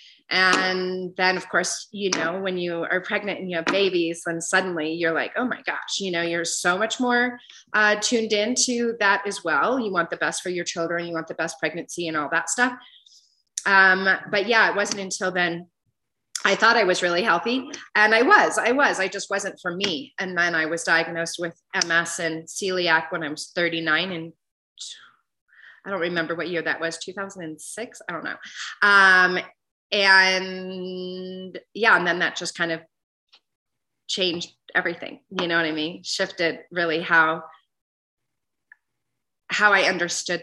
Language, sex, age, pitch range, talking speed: English, female, 30-49, 165-200 Hz, 175 wpm